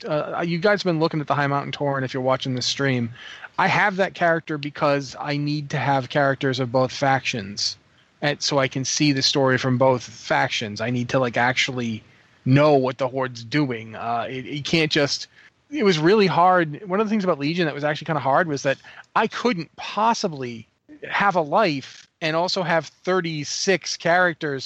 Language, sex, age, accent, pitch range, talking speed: English, male, 30-49, American, 135-175 Hz, 200 wpm